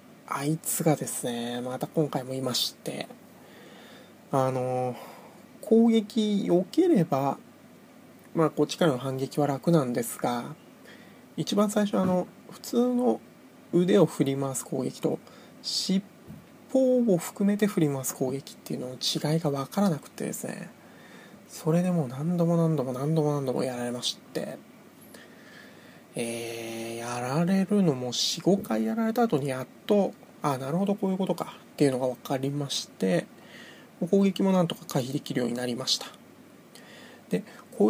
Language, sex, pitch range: Japanese, male, 135-200 Hz